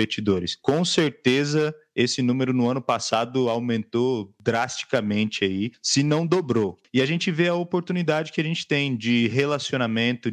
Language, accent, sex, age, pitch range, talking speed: Portuguese, Brazilian, male, 20-39, 110-150 Hz, 150 wpm